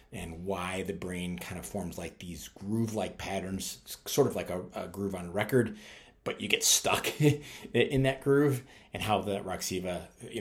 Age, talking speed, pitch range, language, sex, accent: 30-49, 180 wpm, 85-105 Hz, English, male, American